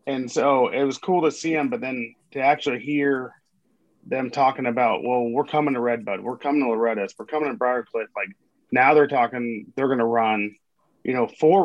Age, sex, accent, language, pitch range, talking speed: 30-49, male, American, English, 120-140 Hz, 205 wpm